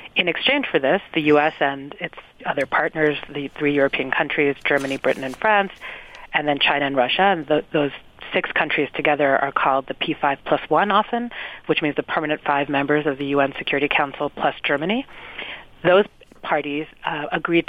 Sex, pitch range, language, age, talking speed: female, 140-160 Hz, English, 40-59, 175 wpm